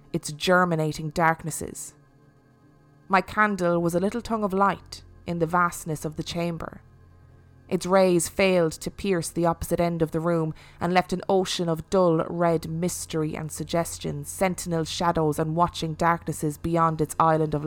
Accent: Irish